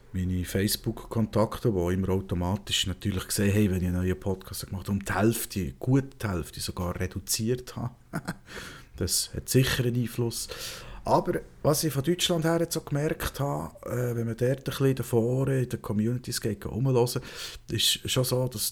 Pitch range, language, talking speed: 100-125 Hz, German, 165 wpm